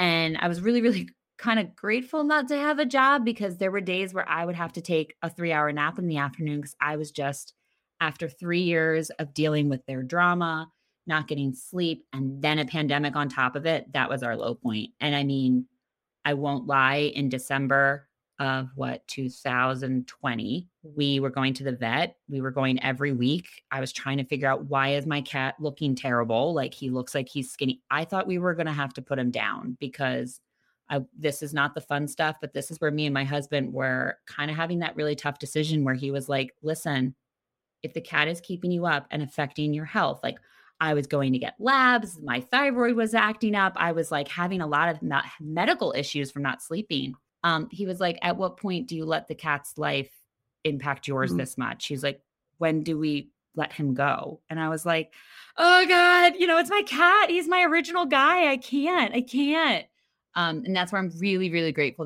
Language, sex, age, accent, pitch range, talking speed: English, female, 20-39, American, 140-180 Hz, 215 wpm